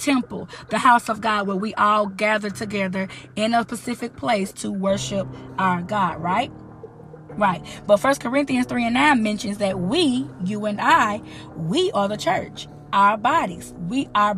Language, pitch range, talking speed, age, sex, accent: English, 185-235 Hz, 165 wpm, 20-39, female, American